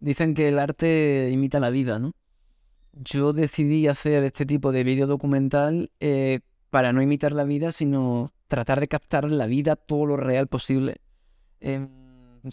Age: 20-39